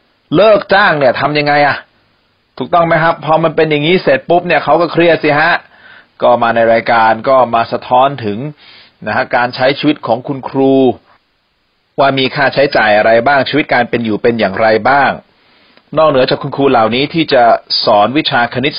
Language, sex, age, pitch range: Thai, male, 30-49, 110-140 Hz